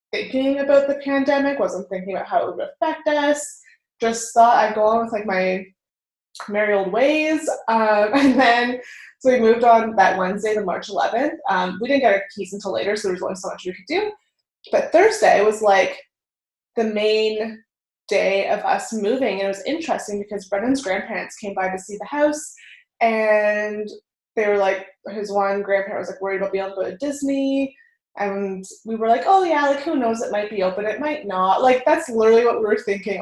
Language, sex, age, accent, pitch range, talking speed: English, female, 20-39, American, 195-240 Hz, 210 wpm